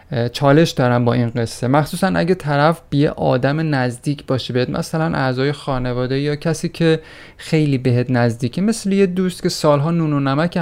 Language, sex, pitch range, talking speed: Persian, male, 125-160 Hz, 170 wpm